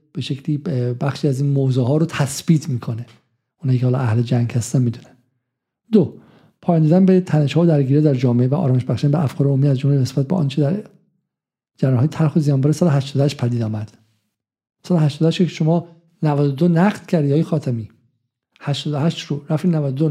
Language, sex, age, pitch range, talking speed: Persian, male, 50-69, 140-180 Hz, 175 wpm